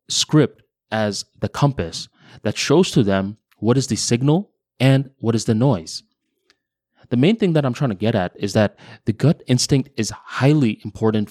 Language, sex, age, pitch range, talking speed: English, male, 20-39, 105-130 Hz, 180 wpm